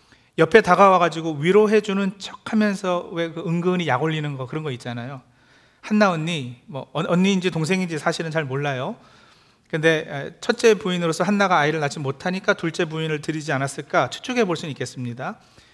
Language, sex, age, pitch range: Korean, male, 40-59, 145-195 Hz